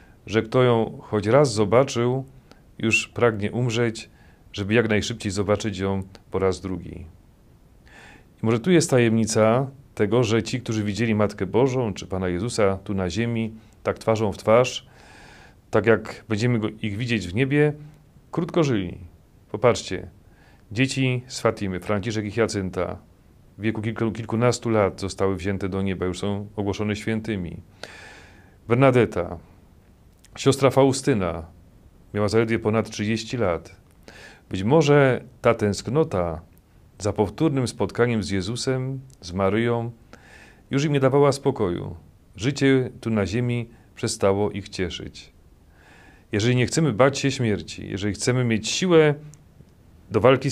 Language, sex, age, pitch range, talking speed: Polish, male, 40-59, 95-125 Hz, 130 wpm